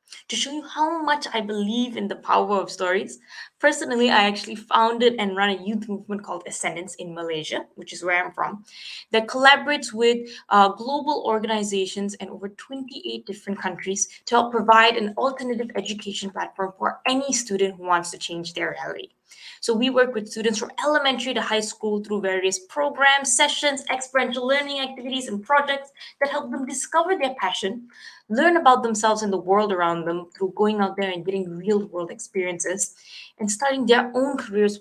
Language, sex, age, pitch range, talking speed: English, female, 20-39, 195-255 Hz, 180 wpm